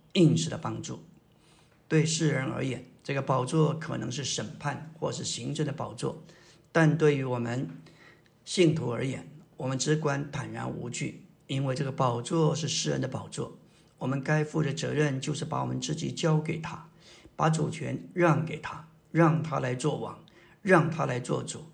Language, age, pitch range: Chinese, 50-69, 135-165 Hz